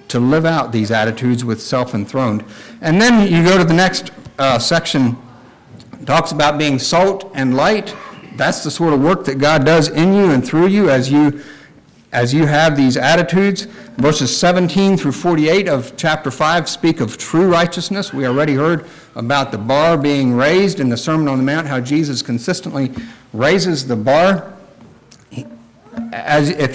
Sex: male